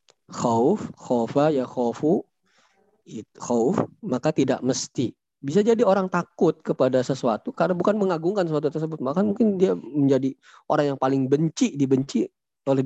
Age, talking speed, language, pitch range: 20-39, 130 wpm, Indonesian, 130-165 Hz